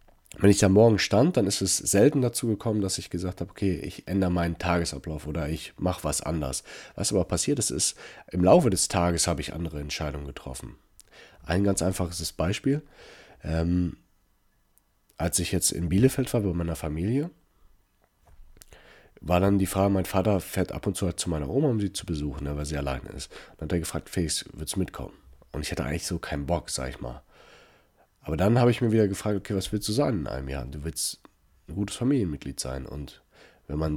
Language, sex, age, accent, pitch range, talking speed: German, male, 40-59, German, 80-100 Hz, 210 wpm